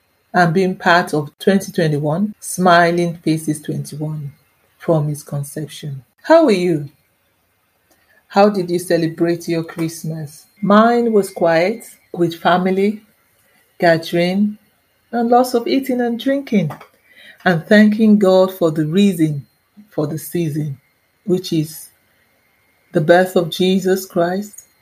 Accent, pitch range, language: Nigerian, 155-190 Hz, English